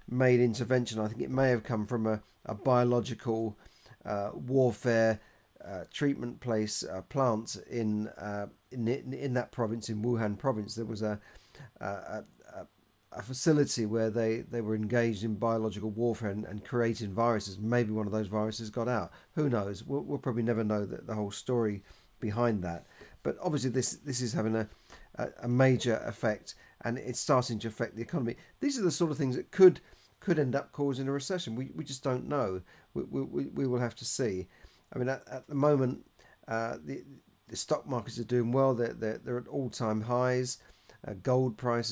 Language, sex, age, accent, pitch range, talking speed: English, male, 40-59, British, 110-130 Hz, 190 wpm